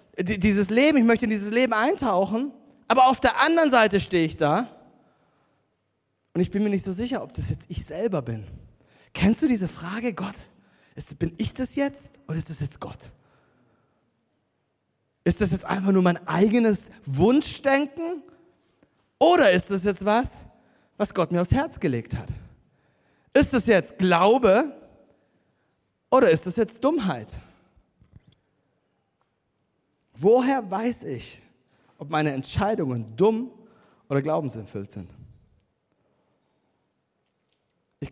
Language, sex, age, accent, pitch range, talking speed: German, male, 30-49, German, 155-230 Hz, 130 wpm